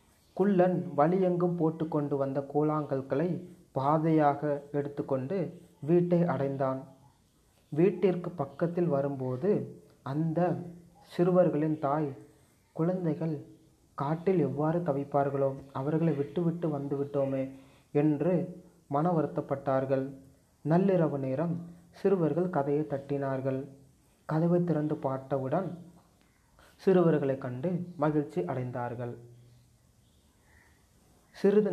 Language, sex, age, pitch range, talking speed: Tamil, male, 30-49, 140-170 Hz, 80 wpm